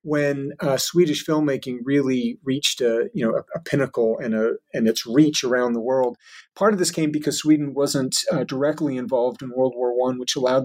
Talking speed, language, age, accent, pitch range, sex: 205 wpm, English, 40-59, American, 120-150 Hz, male